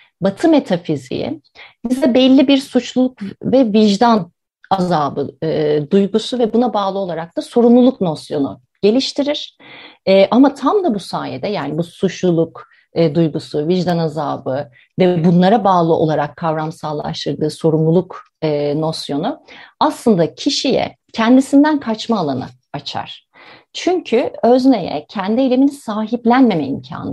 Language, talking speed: Turkish, 115 wpm